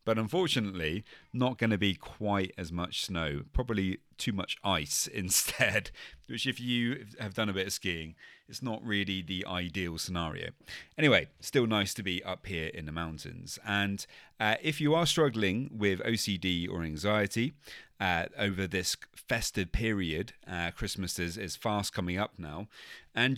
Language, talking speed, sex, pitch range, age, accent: English, 165 wpm, male, 85-115 Hz, 30-49, British